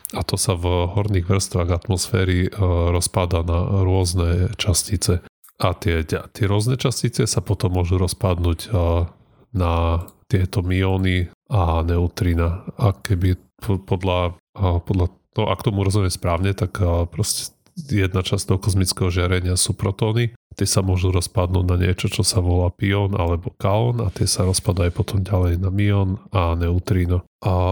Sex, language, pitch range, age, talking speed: male, Slovak, 90-105 Hz, 30-49, 140 wpm